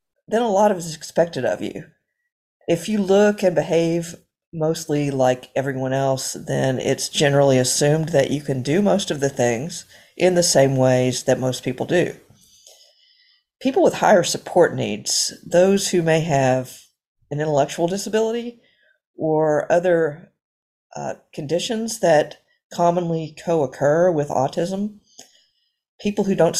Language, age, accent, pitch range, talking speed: English, 50-69, American, 140-185 Hz, 140 wpm